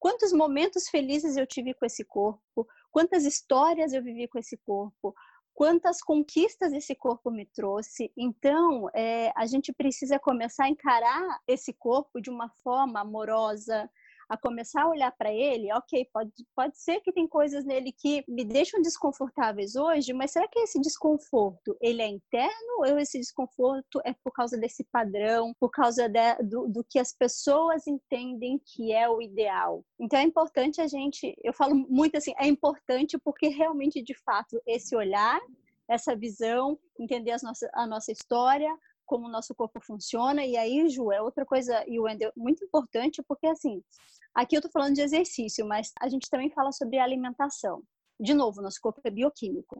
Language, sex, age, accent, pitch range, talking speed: Portuguese, female, 20-39, Brazilian, 230-295 Hz, 170 wpm